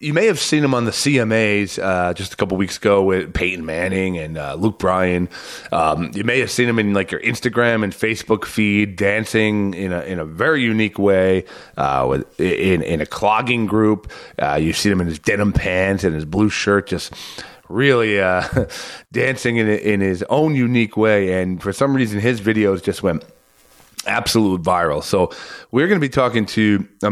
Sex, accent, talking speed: male, American, 200 wpm